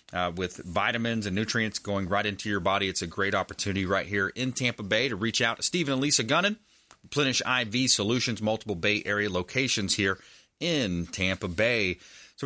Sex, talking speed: male, 190 wpm